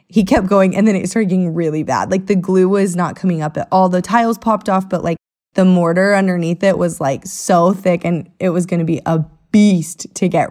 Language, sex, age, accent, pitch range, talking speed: English, female, 20-39, American, 165-200 Hz, 245 wpm